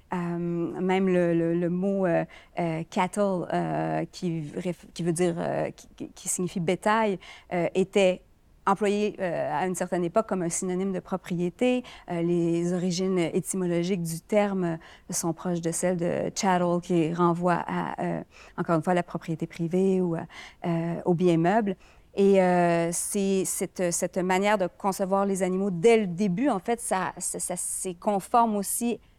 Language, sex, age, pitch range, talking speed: French, female, 40-59, 180-205 Hz, 165 wpm